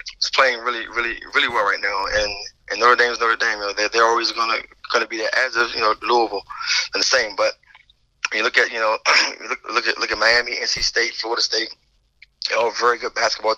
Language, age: English, 20-39